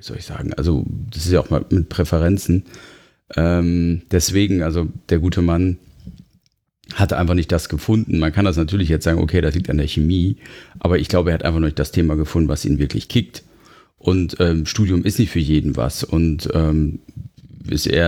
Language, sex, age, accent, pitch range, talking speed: German, male, 40-59, German, 80-95 Hz, 200 wpm